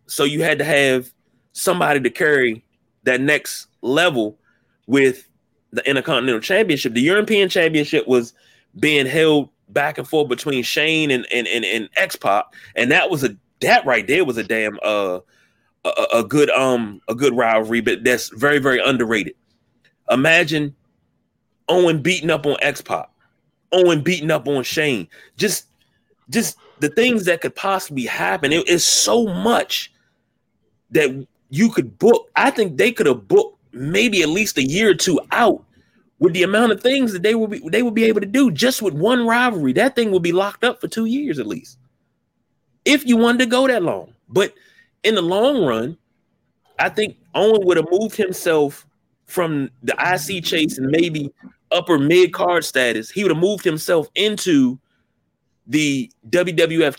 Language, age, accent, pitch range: English, 30-49, American, 140-215 Hz